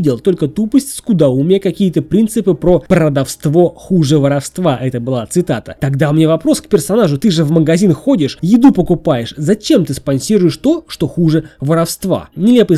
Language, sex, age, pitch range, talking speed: Russian, male, 20-39, 145-205 Hz, 160 wpm